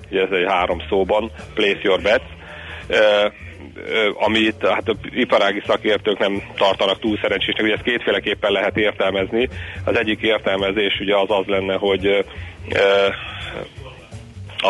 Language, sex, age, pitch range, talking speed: Hungarian, male, 40-59, 95-100 Hz, 130 wpm